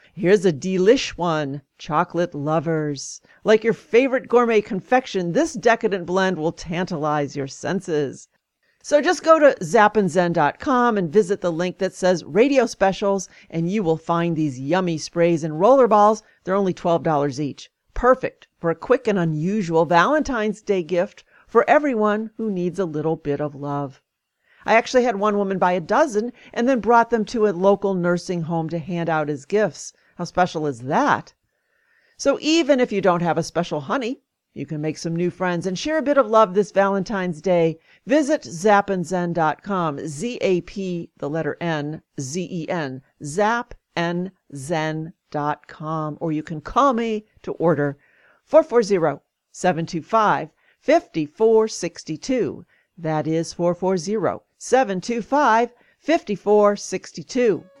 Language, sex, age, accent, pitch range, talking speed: English, female, 50-69, American, 165-220 Hz, 140 wpm